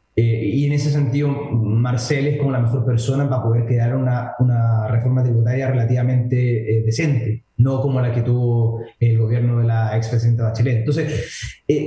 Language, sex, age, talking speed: Spanish, male, 20-39, 175 wpm